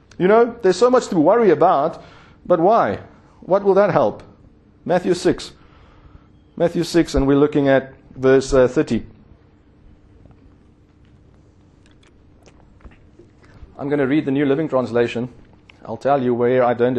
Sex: male